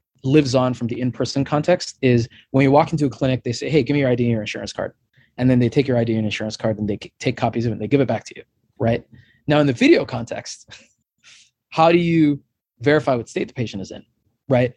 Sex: male